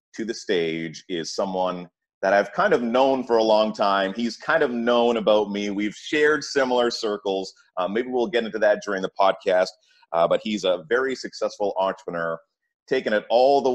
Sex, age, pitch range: male, 30-49, 95-120 Hz